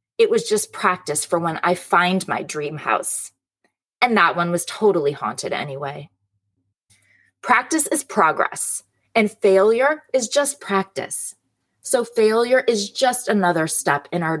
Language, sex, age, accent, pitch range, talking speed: English, female, 20-39, American, 155-230 Hz, 140 wpm